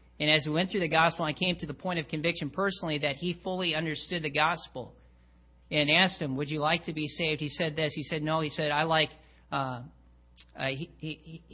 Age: 40-59